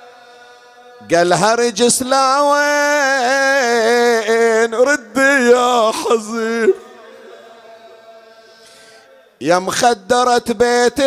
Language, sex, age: Arabic, male, 40-59